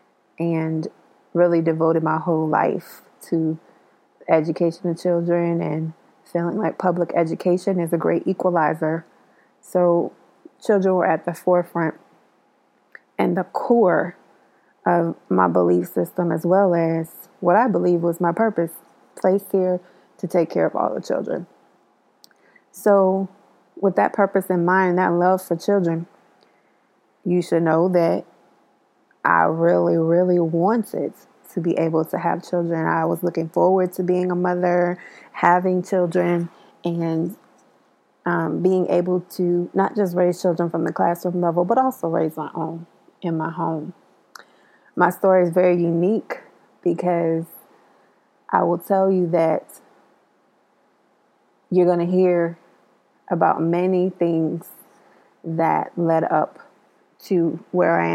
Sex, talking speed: female, 135 wpm